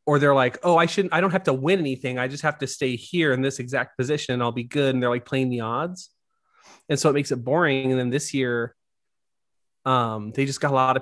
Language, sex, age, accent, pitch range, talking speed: English, male, 30-49, American, 125-155 Hz, 265 wpm